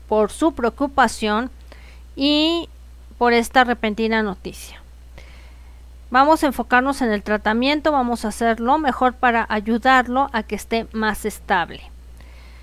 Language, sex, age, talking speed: Spanish, female, 40-59, 125 wpm